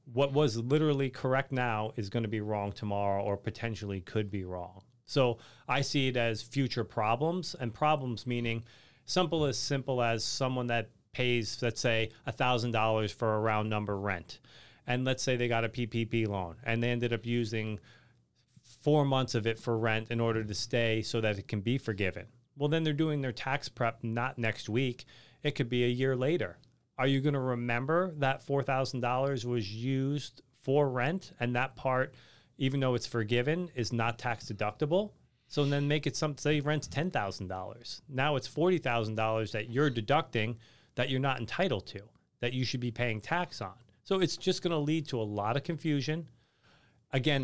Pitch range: 115-140 Hz